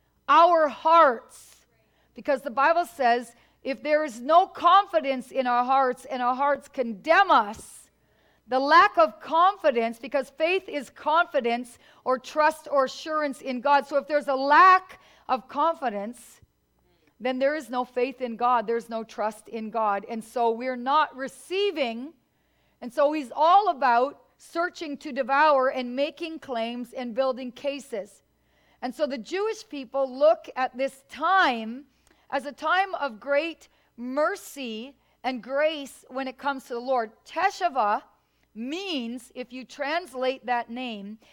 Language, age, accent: English, 40-59, American